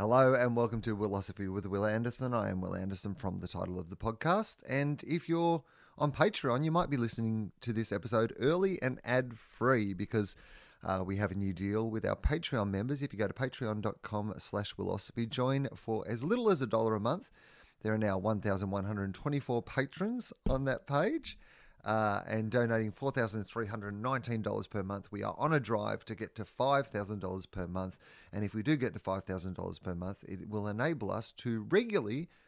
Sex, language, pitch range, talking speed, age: male, English, 100-130 Hz, 185 wpm, 30-49